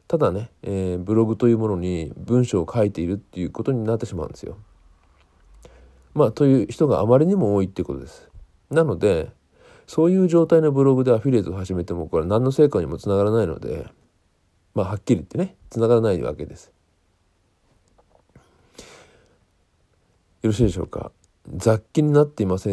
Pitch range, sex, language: 90-125 Hz, male, Japanese